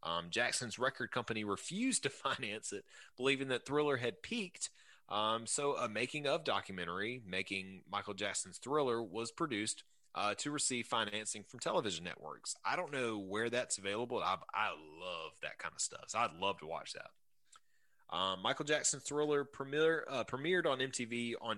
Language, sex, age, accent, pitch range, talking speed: English, male, 30-49, American, 95-135 Hz, 165 wpm